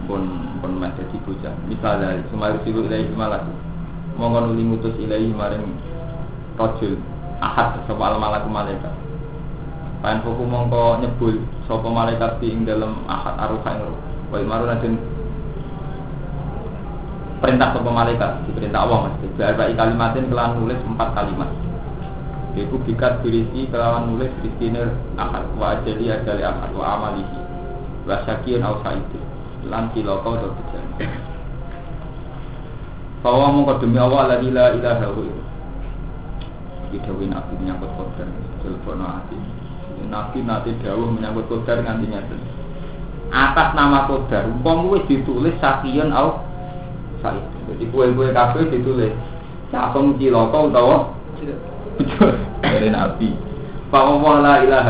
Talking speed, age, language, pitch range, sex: 105 wpm, 20-39, Indonesian, 110-135 Hz, male